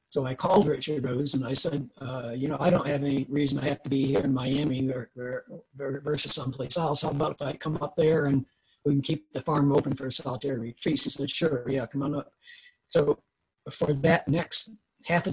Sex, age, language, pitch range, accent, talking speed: male, 60-79, English, 135-160 Hz, American, 235 wpm